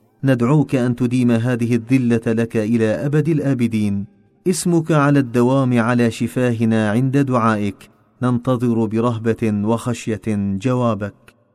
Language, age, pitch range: Arabic, 40-59, 110-130 Hz